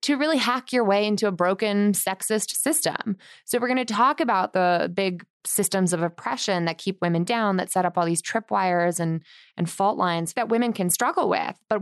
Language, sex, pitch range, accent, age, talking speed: English, female, 175-235 Hz, American, 20-39, 205 wpm